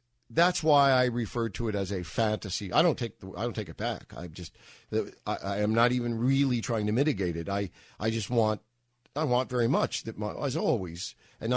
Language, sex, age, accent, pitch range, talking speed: English, male, 50-69, American, 105-125 Hz, 230 wpm